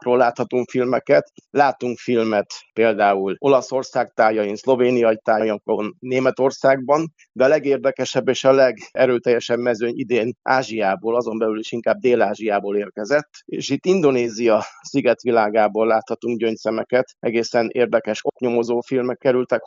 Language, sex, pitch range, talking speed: Hungarian, male, 110-125 Hz, 115 wpm